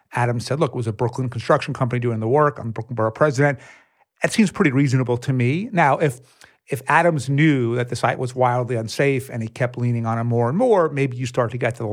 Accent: American